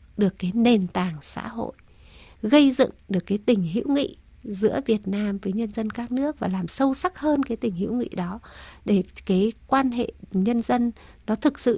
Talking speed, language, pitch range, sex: 205 wpm, Vietnamese, 195-235 Hz, female